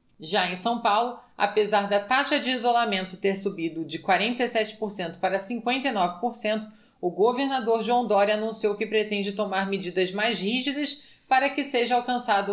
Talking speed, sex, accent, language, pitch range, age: 145 wpm, female, Brazilian, Portuguese, 195-240 Hz, 20-39